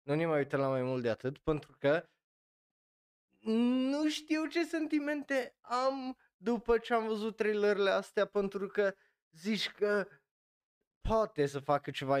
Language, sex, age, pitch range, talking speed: Romanian, male, 20-39, 125-165 Hz, 150 wpm